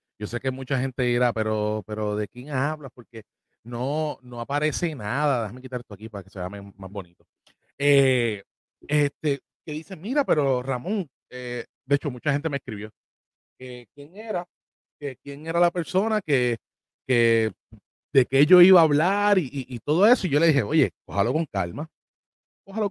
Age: 30-49